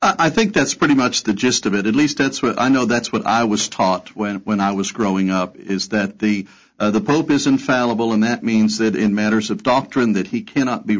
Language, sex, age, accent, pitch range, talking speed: English, male, 50-69, American, 115-160 Hz, 260 wpm